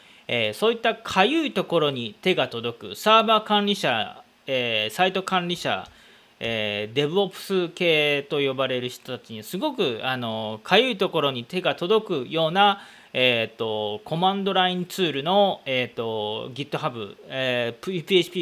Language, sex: Japanese, male